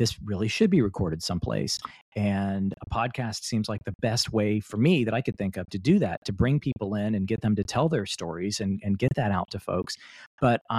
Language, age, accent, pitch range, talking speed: English, 40-59, American, 95-115 Hz, 240 wpm